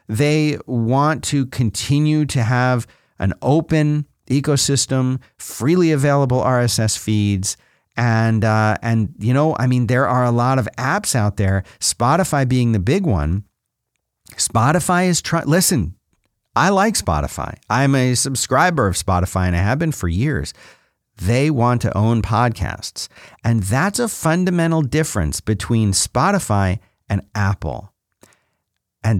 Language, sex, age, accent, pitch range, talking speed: English, male, 40-59, American, 95-135 Hz, 135 wpm